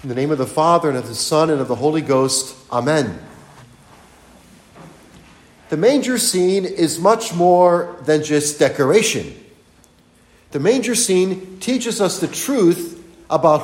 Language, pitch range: English, 150-220 Hz